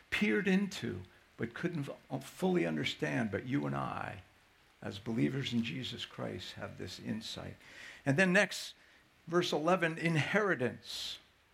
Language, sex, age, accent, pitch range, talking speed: English, male, 60-79, American, 105-170 Hz, 120 wpm